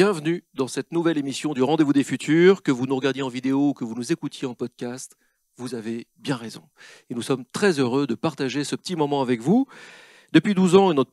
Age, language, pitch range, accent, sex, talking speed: 40-59, French, 130-170 Hz, French, male, 225 wpm